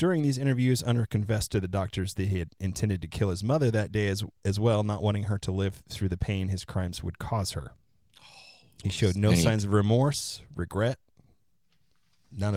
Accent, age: American, 30-49